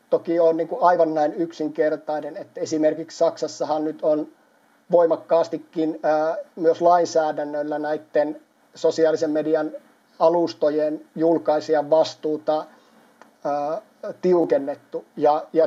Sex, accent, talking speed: male, native, 80 wpm